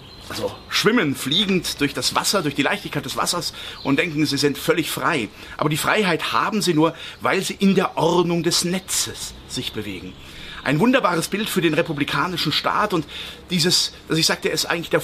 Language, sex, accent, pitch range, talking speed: German, male, German, 135-175 Hz, 190 wpm